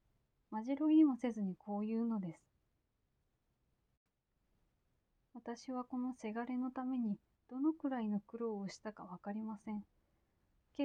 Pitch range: 210-270 Hz